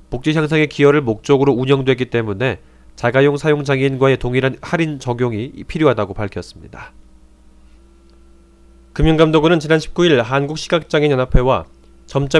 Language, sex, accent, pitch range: Korean, male, native, 110-150 Hz